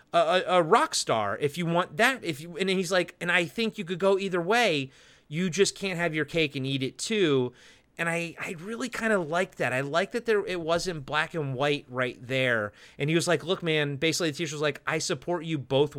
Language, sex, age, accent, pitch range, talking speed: English, male, 30-49, American, 130-175 Hz, 245 wpm